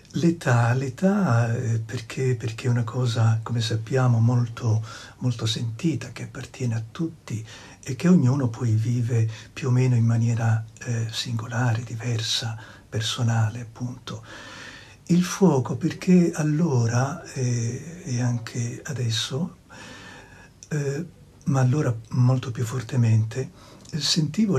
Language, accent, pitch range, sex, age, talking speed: Italian, native, 120-145 Hz, male, 60-79, 115 wpm